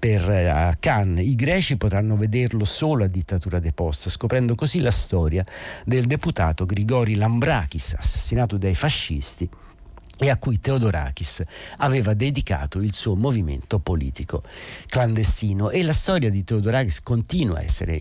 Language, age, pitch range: Italian, 50-69, 90-115 Hz